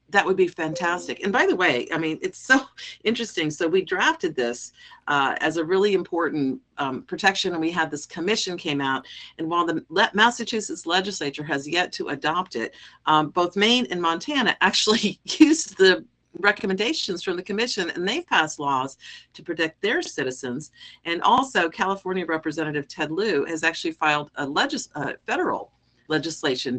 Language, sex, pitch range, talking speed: English, female, 140-185 Hz, 170 wpm